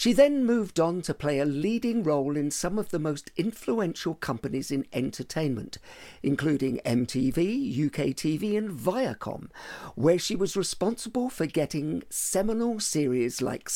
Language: English